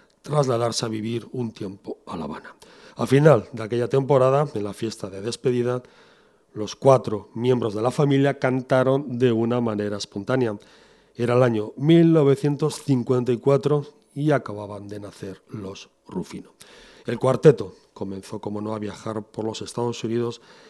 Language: Spanish